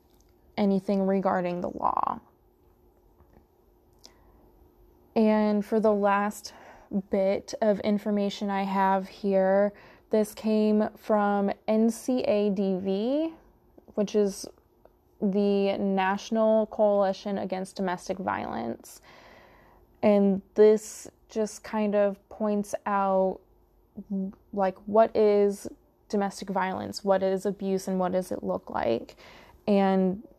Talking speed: 95 wpm